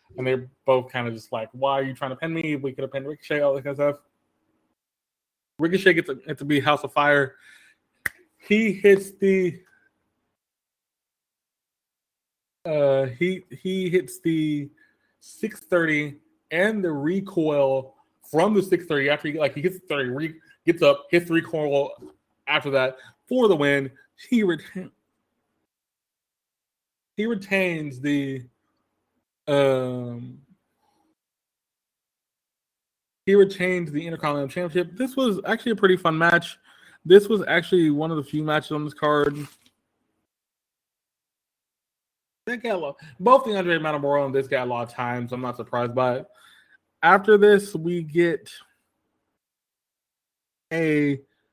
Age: 20-39